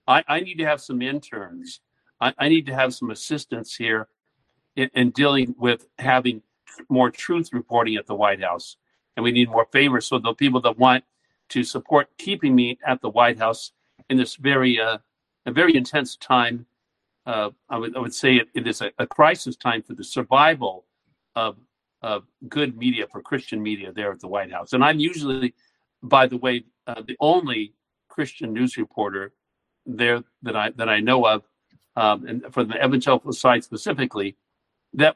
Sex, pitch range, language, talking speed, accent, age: male, 115-145 Hz, English, 185 wpm, American, 50-69